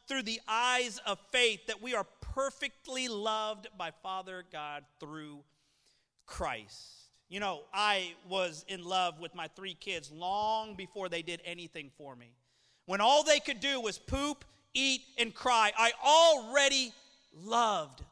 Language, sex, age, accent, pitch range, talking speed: English, male, 40-59, American, 155-225 Hz, 150 wpm